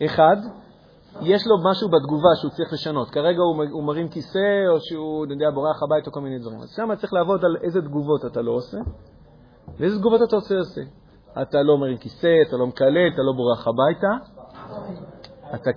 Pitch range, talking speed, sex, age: 145-190 Hz, 190 wpm, male, 40-59